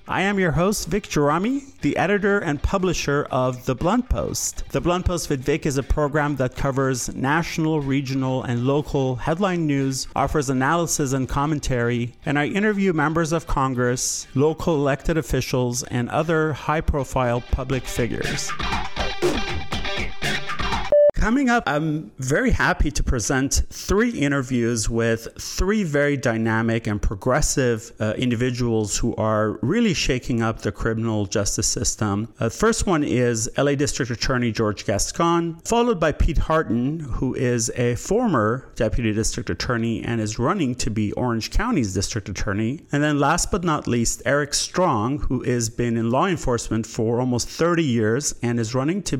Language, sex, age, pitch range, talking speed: English, male, 30-49, 115-150 Hz, 150 wpm